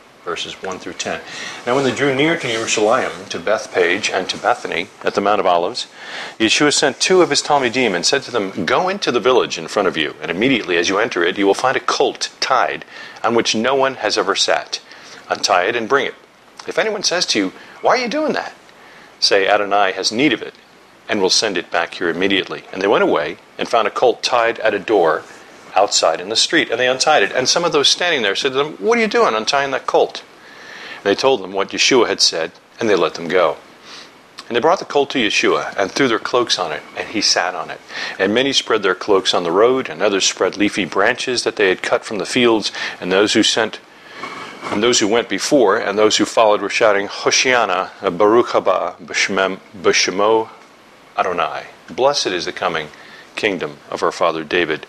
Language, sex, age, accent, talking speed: English, male, 40-59, American, 220 wpm